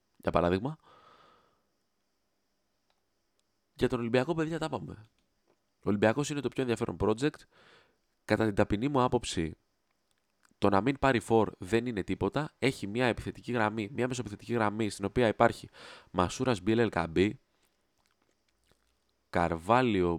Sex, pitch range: male, 95-120 Hz